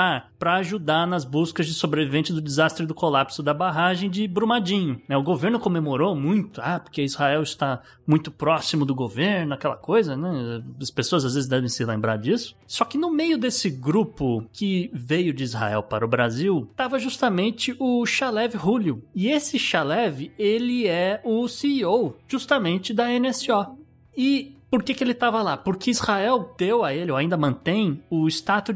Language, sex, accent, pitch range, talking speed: Portuguese, male, Brazilian, 155-230 Hz, 170 wpm